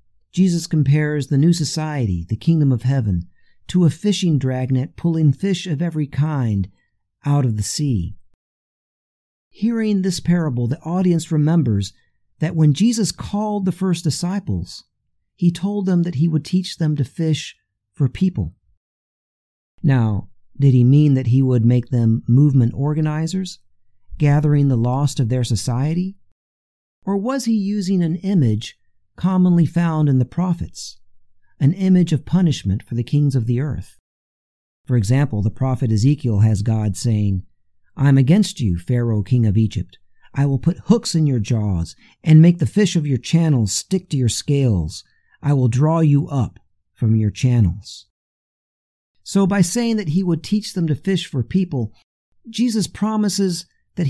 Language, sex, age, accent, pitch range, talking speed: English, male, 50-69, American, 110-175 Hz, 155 wpm